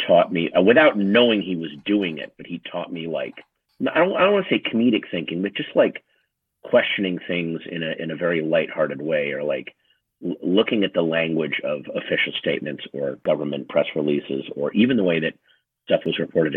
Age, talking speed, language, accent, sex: 50-69, 205 wpm, English, American, male